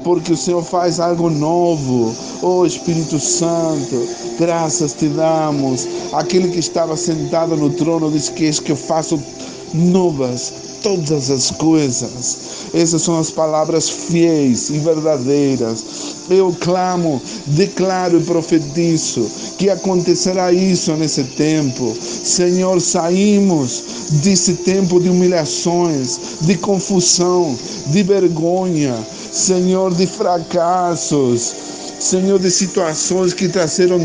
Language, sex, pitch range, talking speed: Spanish, male, 155-185 Hz, 110 wpm